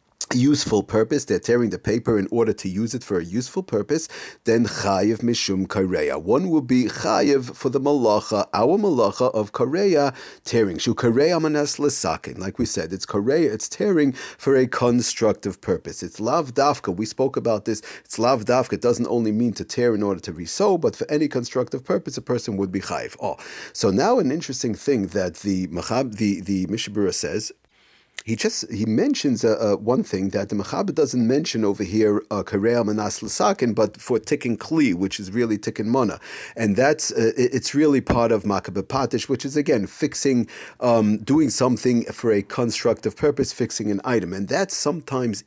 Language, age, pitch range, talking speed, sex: English, 40-59, 105-130 Hz, 185 wpm, male